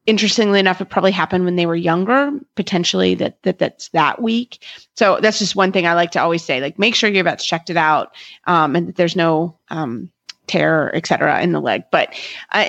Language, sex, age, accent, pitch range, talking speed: English, female, 30-49, American, 170-200 Hz, 220 wpm